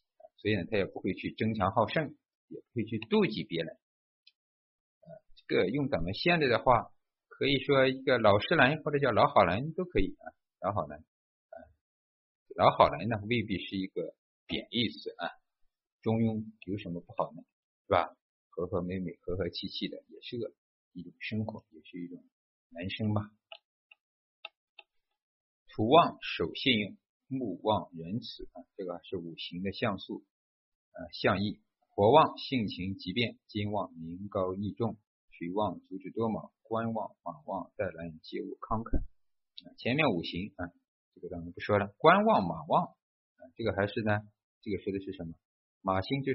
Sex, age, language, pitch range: male, 50-69, Chinese, 90-125 Hz